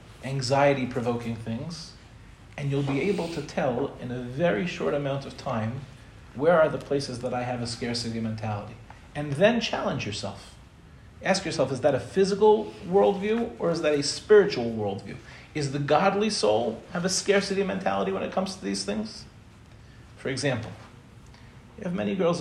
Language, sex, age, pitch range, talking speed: English, male, 40-59, 115-160 Hz, 165 wpm